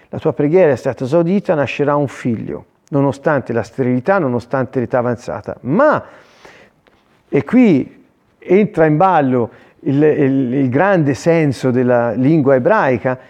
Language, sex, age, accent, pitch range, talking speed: Italian, male, 40-59, native, 130-170 Hz, 125 wpm